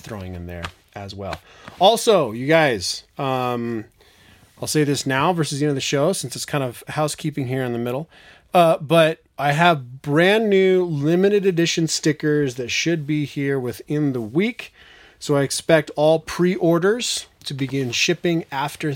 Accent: American